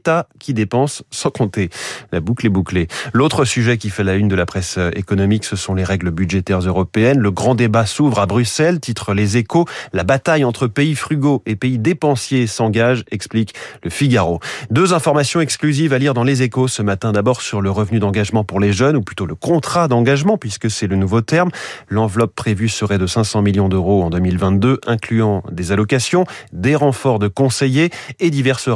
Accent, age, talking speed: French, 30-49, 190 wpm